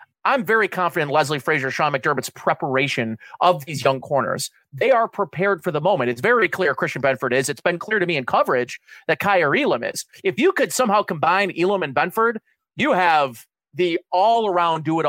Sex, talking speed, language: male, 205 wpm, English